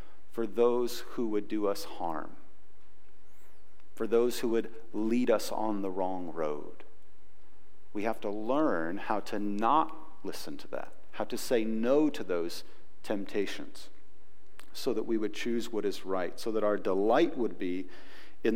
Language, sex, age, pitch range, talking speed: English, male, 40-59, 100-120 Hz, 160 wpm